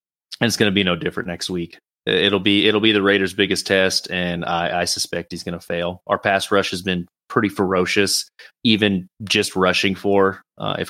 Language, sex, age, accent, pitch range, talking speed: English, male, 30-49, American, 90-100 Hz, 210 wpm